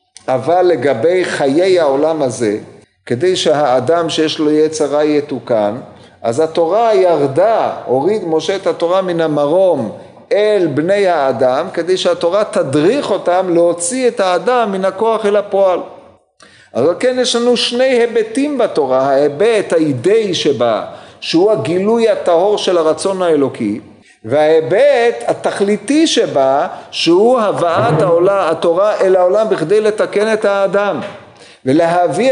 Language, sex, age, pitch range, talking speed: Hebrew, male, 50-69, 160-210 Hz, 125 wpm